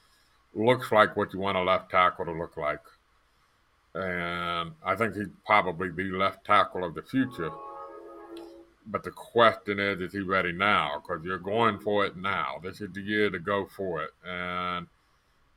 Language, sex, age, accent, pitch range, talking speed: English, male, 50-69, American, 85-100 Hz, 175 wpm